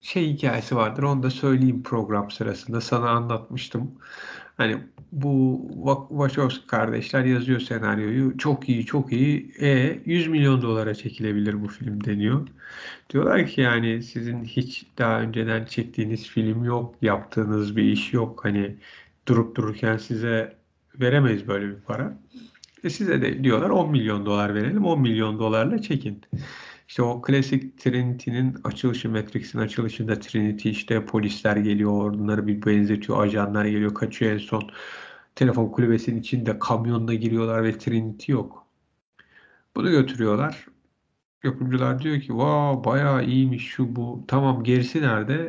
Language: Turkish